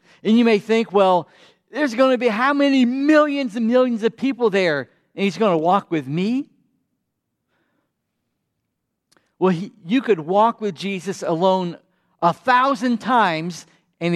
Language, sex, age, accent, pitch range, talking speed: English, male, 50-69, American, 150-205 Hz, 150 wpm